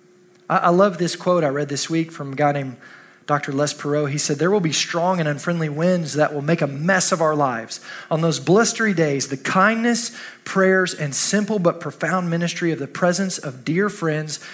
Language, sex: English, male